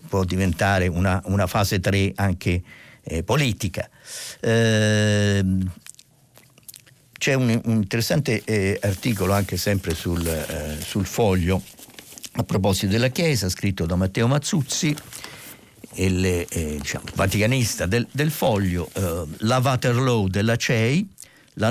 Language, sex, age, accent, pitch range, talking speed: Italian, male, 50-69, native, 95-130 Hz, 115 wpm